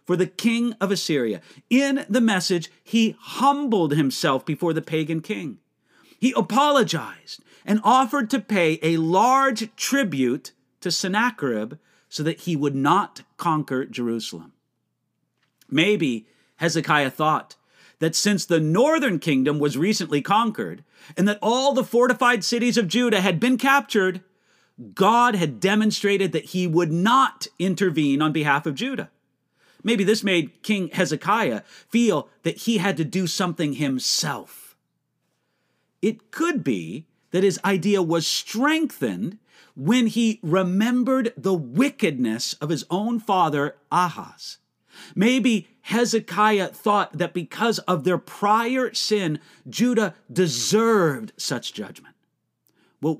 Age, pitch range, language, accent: 40-59, 165-230 Hz, English, American